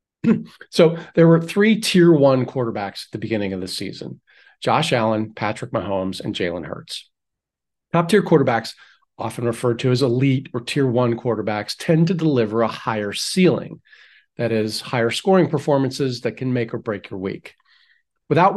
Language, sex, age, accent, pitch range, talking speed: English, male, 40-59, American, 110-160 Hz, 160 wpm